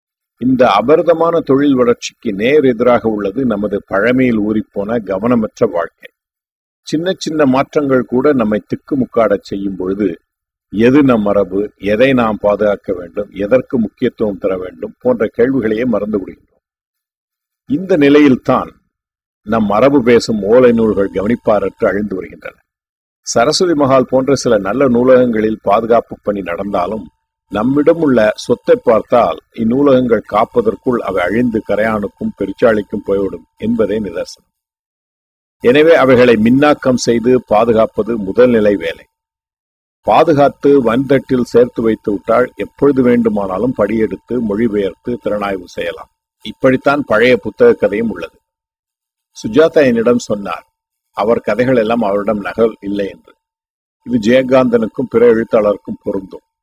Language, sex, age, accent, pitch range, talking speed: Tamil, male, 50-69, native, 100-155 Hz, 105 wpm